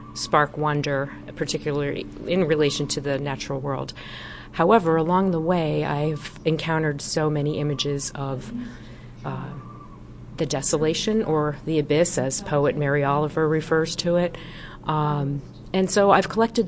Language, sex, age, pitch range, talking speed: English, female, 40-59, 150-180 Hz, 135 wpm